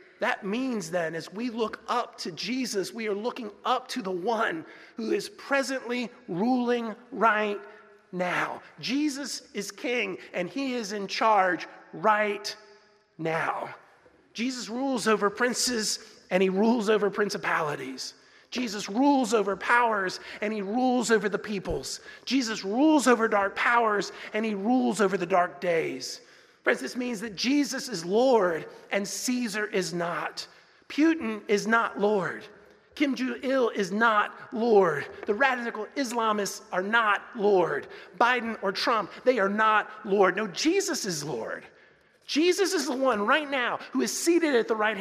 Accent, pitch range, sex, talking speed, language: American, 205-255 Hz, male, 150 wpm, English